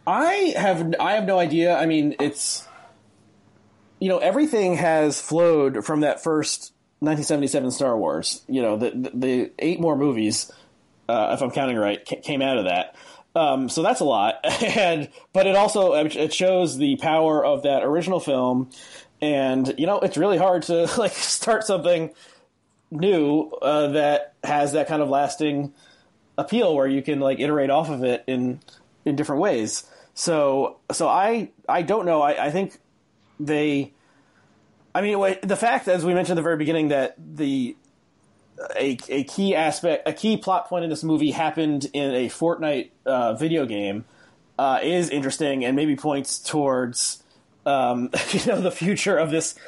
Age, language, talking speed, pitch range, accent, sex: 30-49, English, 170 wpm, 140-175 Hz, American, male